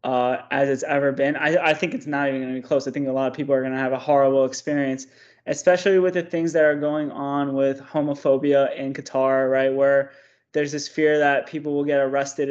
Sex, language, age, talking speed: male, English, 20-39, 240 wpm